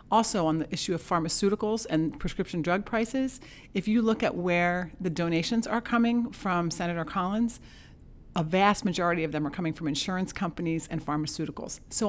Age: 40-59